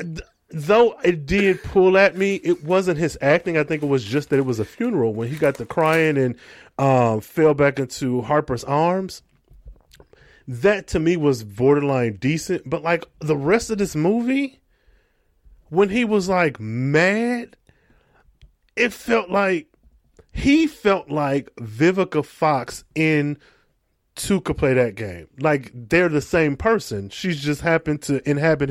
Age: 30-49